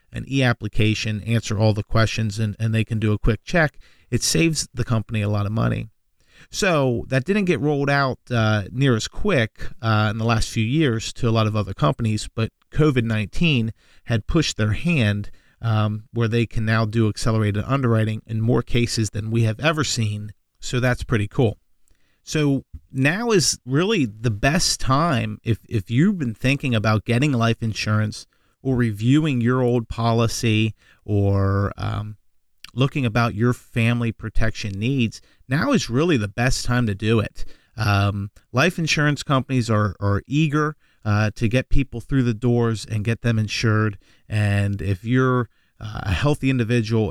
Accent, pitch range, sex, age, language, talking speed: American, 105-125 Hz, male, 40-59, English, 170 wpm